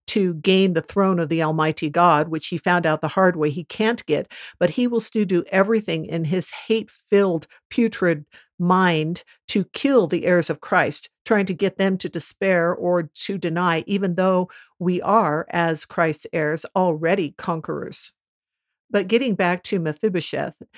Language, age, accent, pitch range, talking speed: English, 50-69, American, 165-205 Hz, 170 wpm